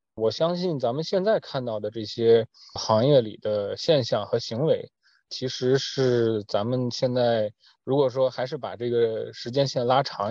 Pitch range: 115-140 Hz